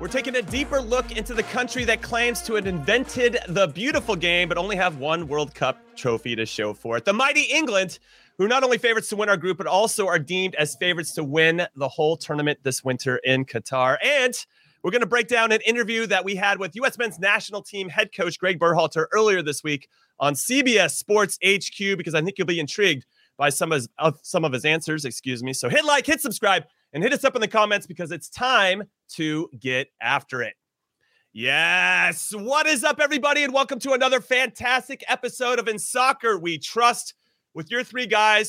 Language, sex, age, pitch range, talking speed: English, male, 30-49, 160-235 Hz, 215 wpm